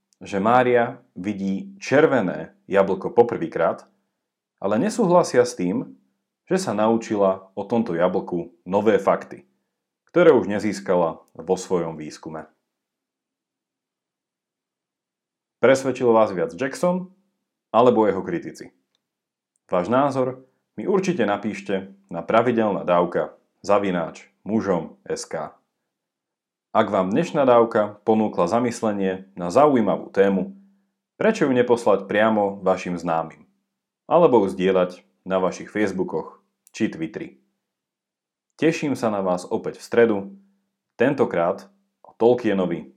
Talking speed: 105 wpm